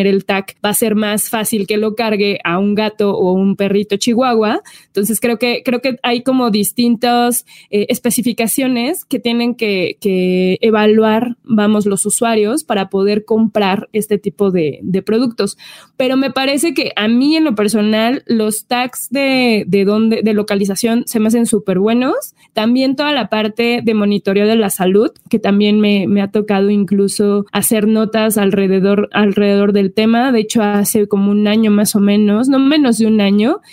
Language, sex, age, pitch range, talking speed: Spanish, female, 20-39, 205-240 Hz, 180 wpm